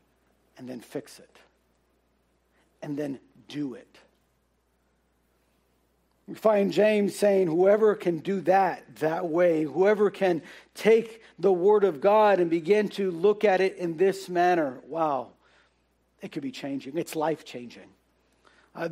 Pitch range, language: 170-210 Hz, English